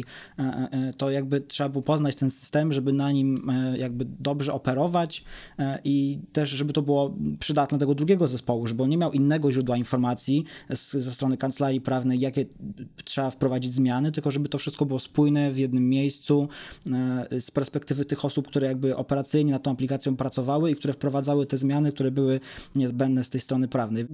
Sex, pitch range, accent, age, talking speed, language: male, 130-145 Hz, native, 20-39, 170 wpm, Polish